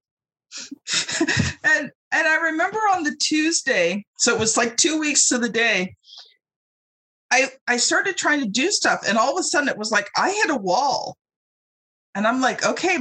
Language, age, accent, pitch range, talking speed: English, 40-59, American, 185-265 Hz, 180 wpm